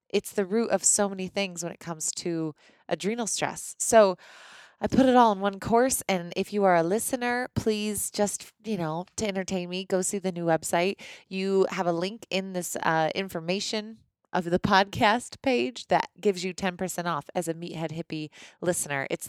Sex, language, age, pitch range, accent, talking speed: female, English, 20-39, 165-210 Hz, American, 195 wpm